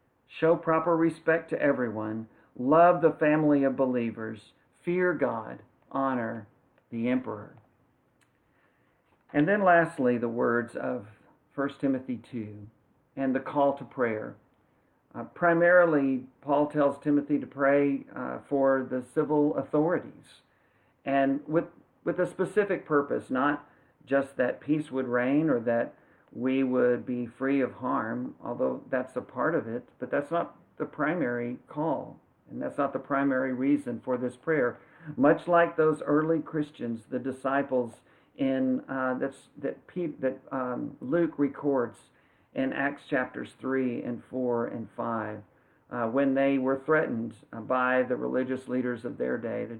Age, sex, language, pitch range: 50-69, male, English, 125-150 Hz